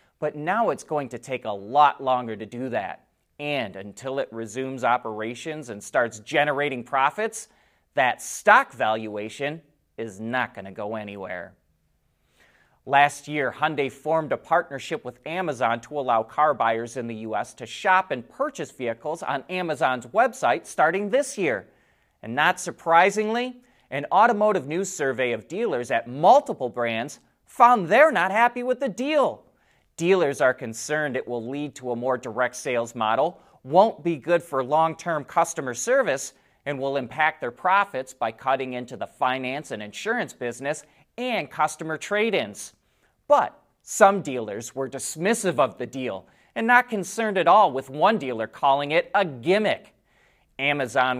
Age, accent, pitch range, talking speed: 30-49, American, 120-170 Hz, 155 wpm